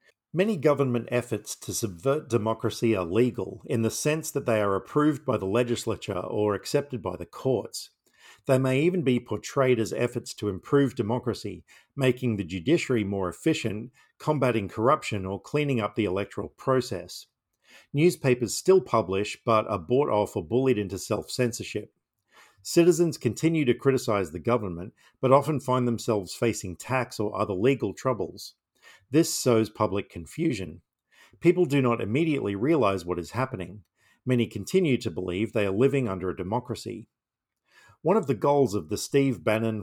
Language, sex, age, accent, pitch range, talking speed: English, male, 50-69, Australian, 105-135 Hz, 155 wpm